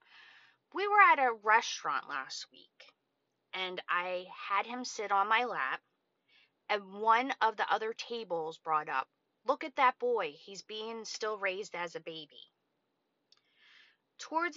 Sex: female